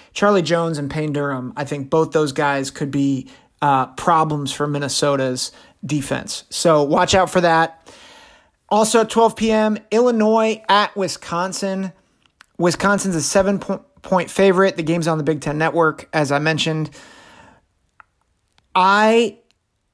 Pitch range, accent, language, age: 150-195 Hz, American, English, 30-49